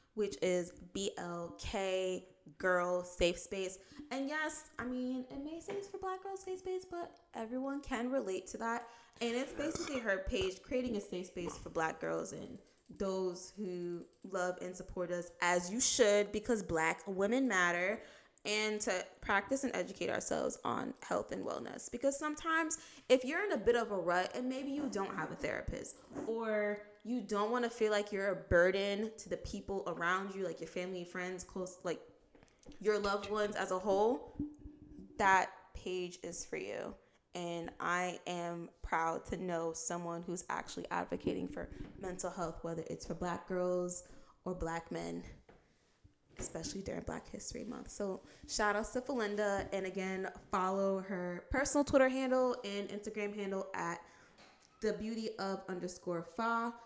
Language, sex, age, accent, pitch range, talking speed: English, female, 20-39, American, 180-245 Hz, 160 wpm